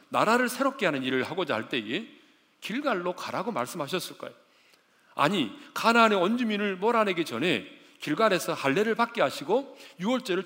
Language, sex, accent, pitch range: Korean, male, native, 170-250 Hz